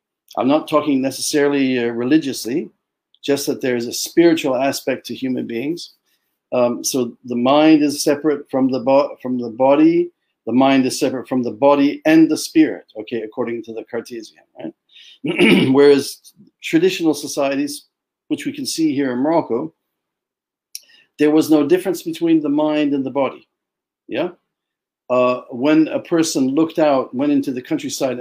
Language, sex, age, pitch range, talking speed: Arabic, male, 50-69, 130-190 Hz, 150 wpm